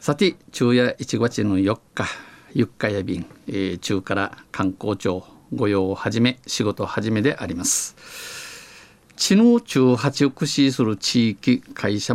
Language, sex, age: Japanese, male, 50-69